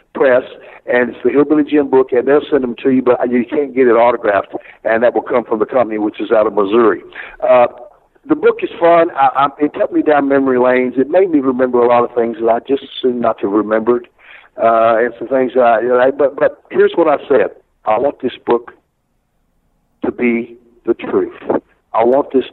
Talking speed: 230 wpm